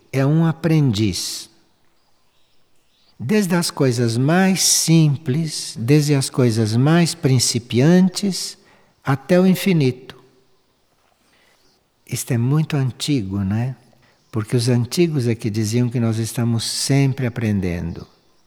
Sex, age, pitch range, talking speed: male, 60-79, 120-170 Hz, 105 wpm